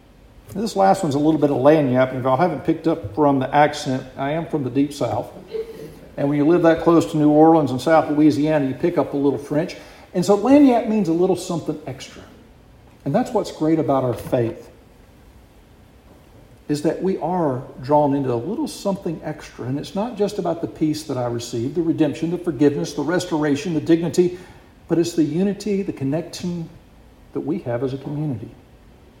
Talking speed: 195 wpm